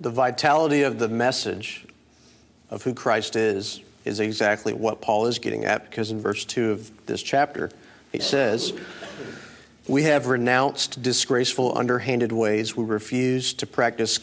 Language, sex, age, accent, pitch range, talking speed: English, male, 40-59, American, 115-135 Hz, 150 wpm